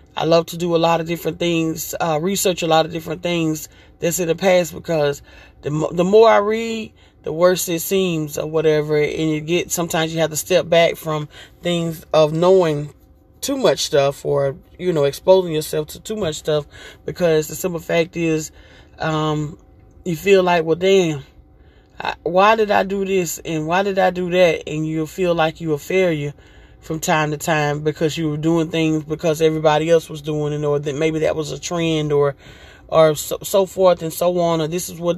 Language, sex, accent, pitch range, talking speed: English, male, American, 155-175 Hz, 210 wpm